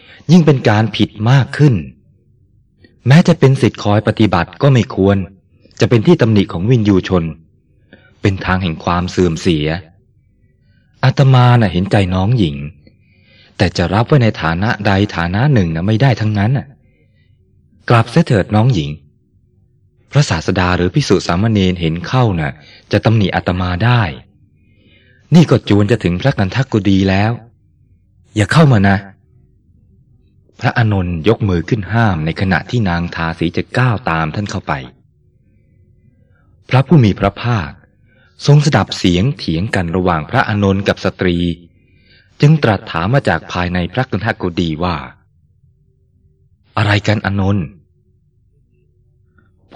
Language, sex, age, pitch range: Thai, male, 20-39, 90-120 Hz